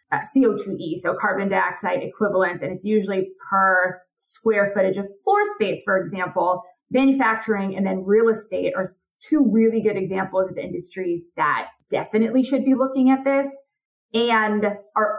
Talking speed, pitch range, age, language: 150 wpm, 190-255 Hz, 20-39, English